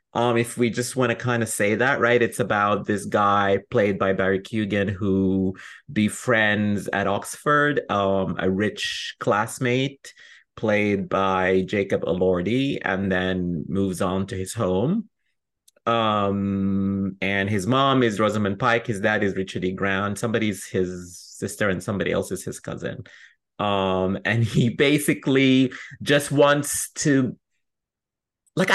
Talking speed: 140 wpm